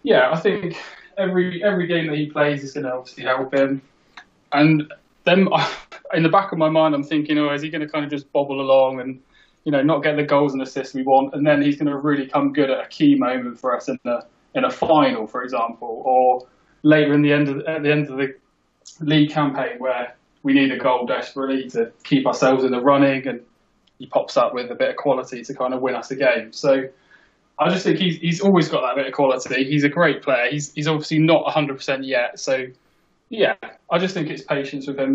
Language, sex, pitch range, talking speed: English, male, 130-150 Hz, 240 wpm